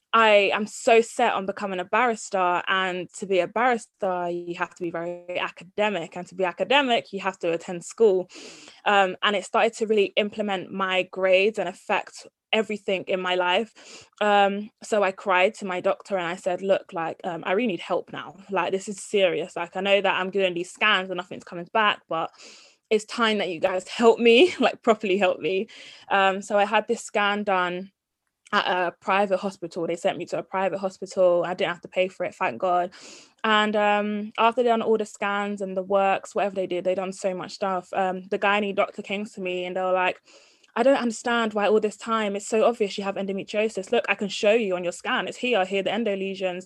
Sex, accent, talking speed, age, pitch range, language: female, British, 225 wpm, 20-39, 185-215 Hz, English